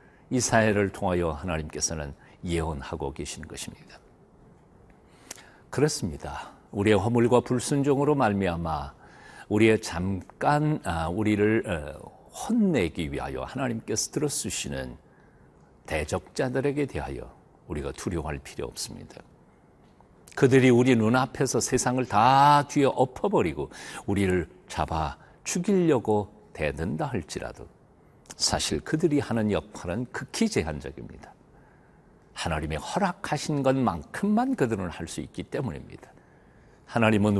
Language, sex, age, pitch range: Korean, male, 50-69, 85-130 Hz